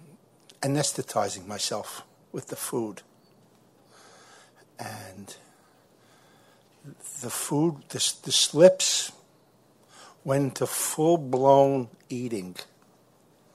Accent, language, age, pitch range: American, English, 60-79, 120-145 Hz